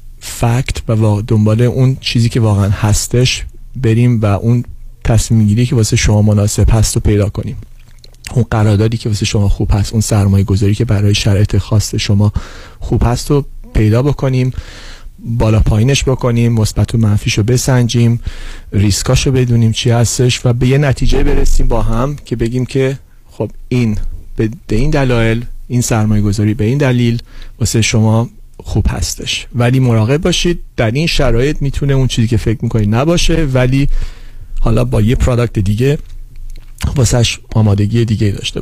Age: 40-59